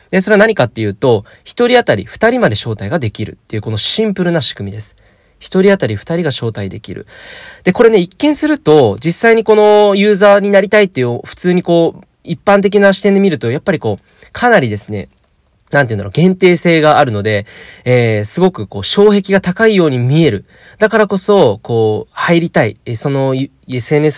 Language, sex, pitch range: Japanese, male, 110-175 Hz